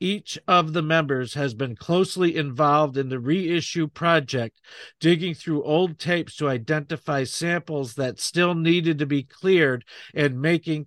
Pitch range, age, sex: 140-170 Hz, 50-69, male